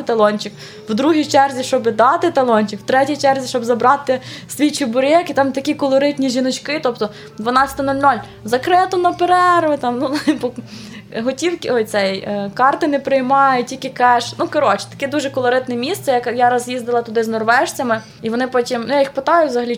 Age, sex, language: 20-39, female, Ukrainian